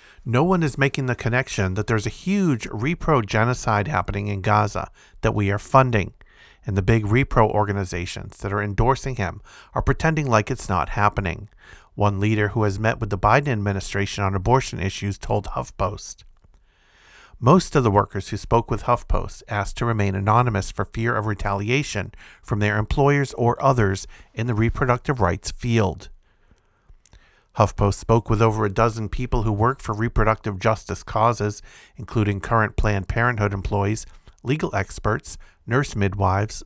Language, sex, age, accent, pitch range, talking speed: English, male, 50-69, American, 100-120 Hz, 155 wpm